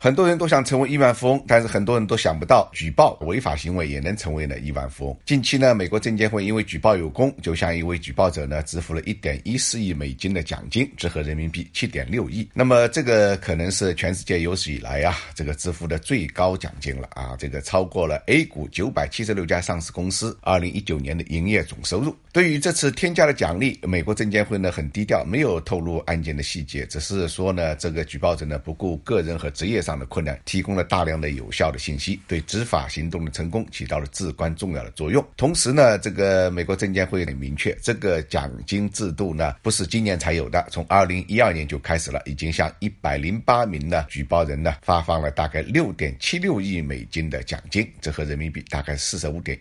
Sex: male